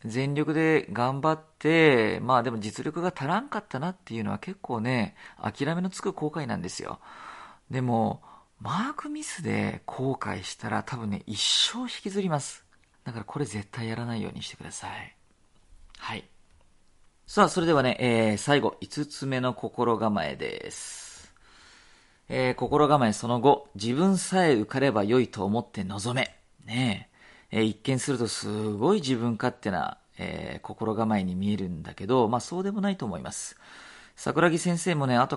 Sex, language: male, Japanese